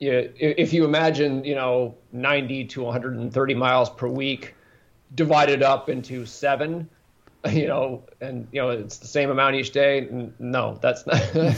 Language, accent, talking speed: English, American, 155 wpm